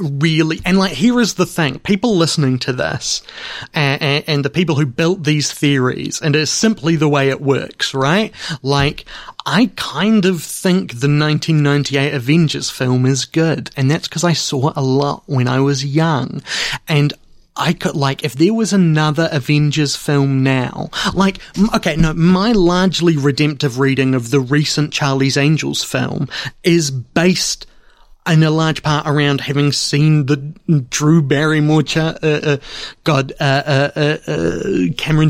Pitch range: 140-165 Hz